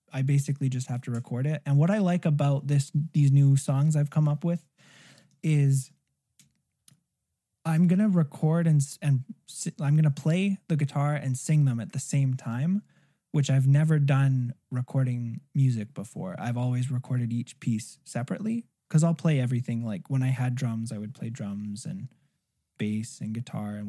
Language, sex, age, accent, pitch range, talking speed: English, male, 20-39, American, 130-155 Hz, 180 wpm